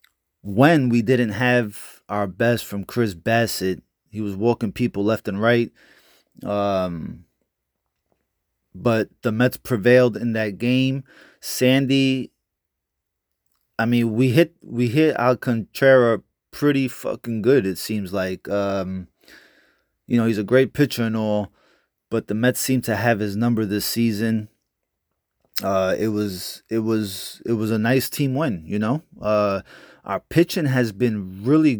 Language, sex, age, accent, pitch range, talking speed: English, male, 30-49, American, 105-125 Hz, 145 wpm